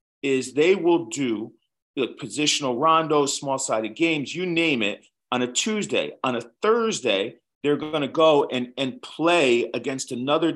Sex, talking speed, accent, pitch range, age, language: male, 160 wpm, American, 130-175 Hz, 40-59, Finnish